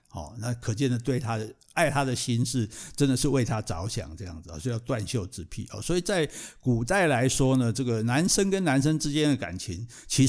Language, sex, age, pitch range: Chinese, male, 60-79, 115-150 Hz